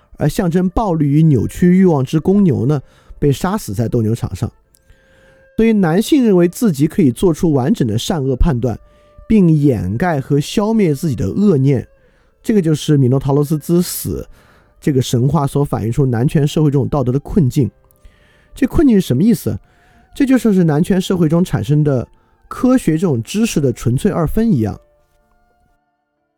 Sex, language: male, Chinese